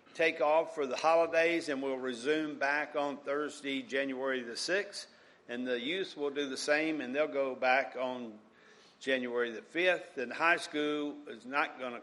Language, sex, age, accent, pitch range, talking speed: English, male, 50-69, American, 130-160 Hz, 180 wpm